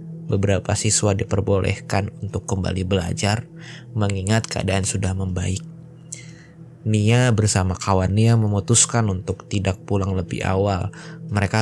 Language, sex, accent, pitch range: Indonesian, male, native, 95-145 Hz